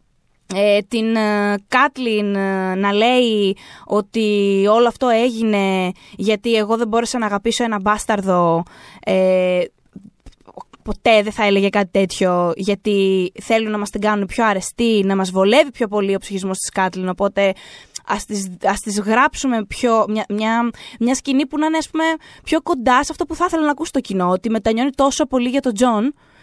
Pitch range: 205-255 Hz